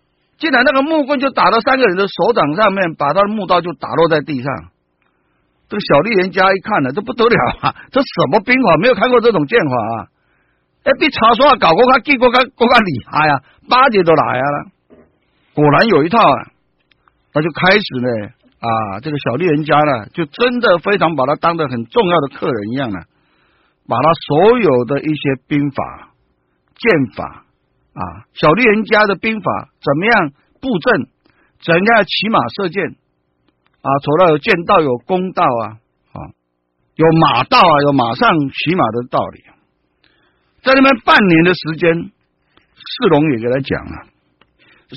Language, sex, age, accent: Chinese, male, 50-69, native